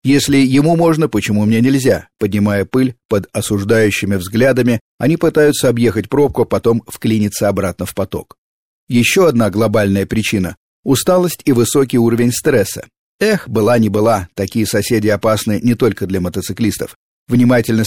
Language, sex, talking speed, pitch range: Russian, male, 140 wpm, 105-135 Hz